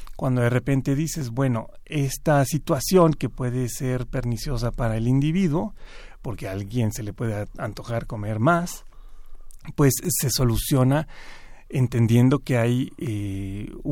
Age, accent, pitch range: 40-59, Mexican, 115-145 Hz